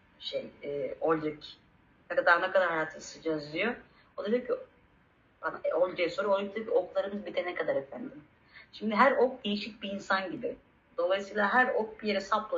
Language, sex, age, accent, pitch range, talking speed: Turkish, female, 40-59, native, 185-245 Hz, 165 wpm